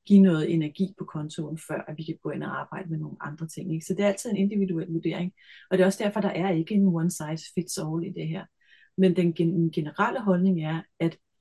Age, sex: 30-49, female